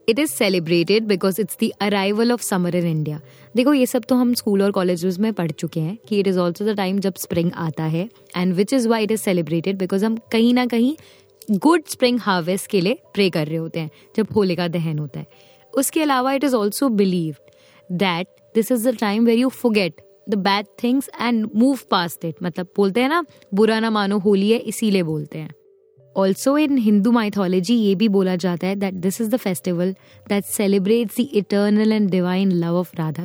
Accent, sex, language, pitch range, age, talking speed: native, female, Hindi, 180-235 Hz, 20-39, 215 wpm